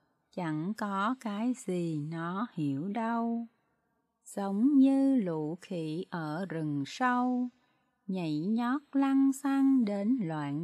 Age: 20-39